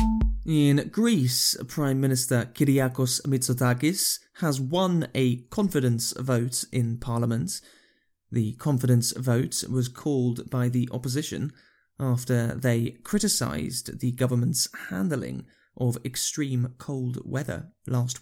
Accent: British